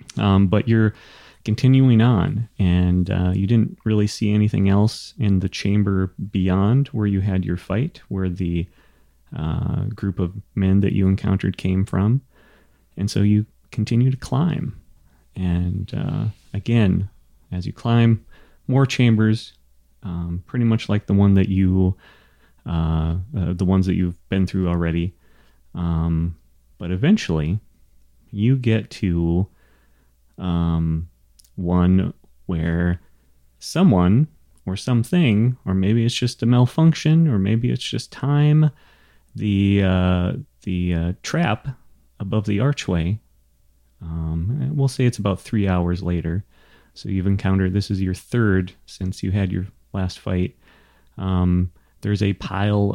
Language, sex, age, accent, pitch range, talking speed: English, male, 30-49, American, 90-110 Hz, 135 wpm